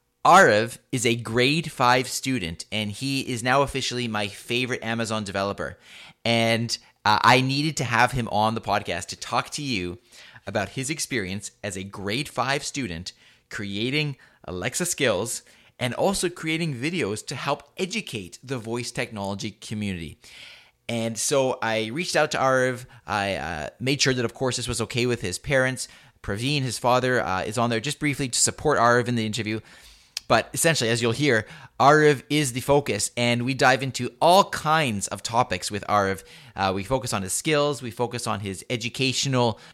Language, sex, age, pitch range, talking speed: English, male, 30-49, 105-135 Hz, 175 wpm